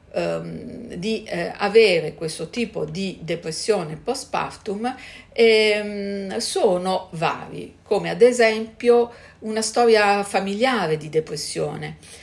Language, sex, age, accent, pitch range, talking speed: Italian, female, 50-69, native, 160-220 Hz, 100 wpm